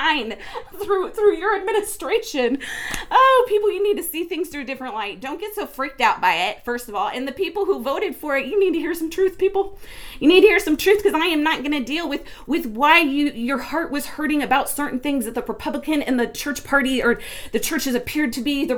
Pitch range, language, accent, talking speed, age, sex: 255-395 Hz, English, American, 245 wpm, 30-49, female